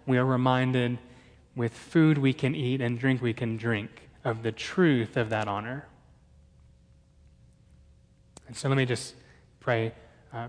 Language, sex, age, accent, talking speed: English, male, 20-39, American, 150 wpm